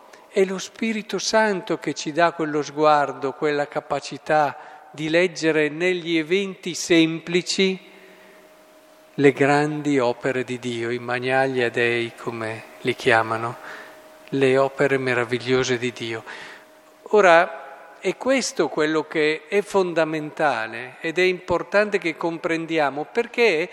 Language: Italian